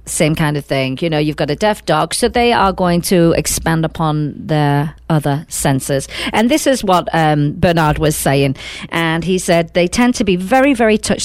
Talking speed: 210 wpm